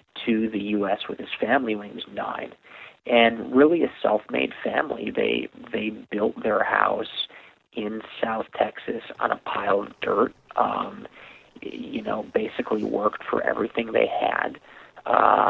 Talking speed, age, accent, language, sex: 145 wpm, 50-69, American, English, male